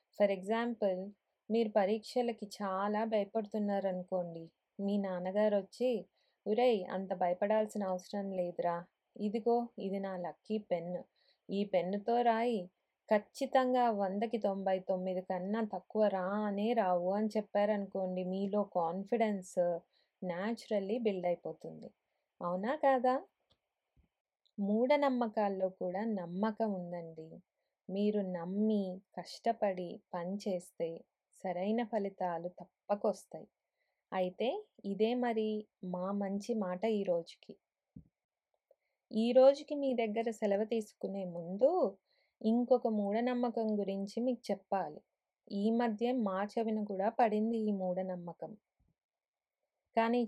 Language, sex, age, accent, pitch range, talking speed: Telugu, female, 20-39, native, 190-230 Hz, 95 wpm